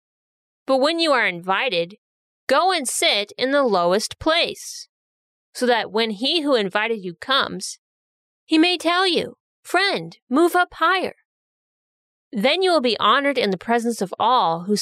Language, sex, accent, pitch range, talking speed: English, female, American, 195-275 Hz, 160 wpm